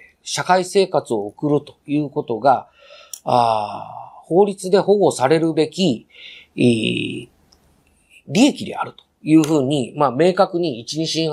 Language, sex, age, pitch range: Japanese, male, 40-59, 120-195 Hz